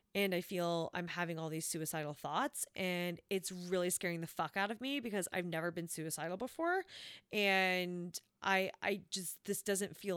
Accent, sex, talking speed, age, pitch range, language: American, female, 185 wpm, 20-39, 180-250 Hz, English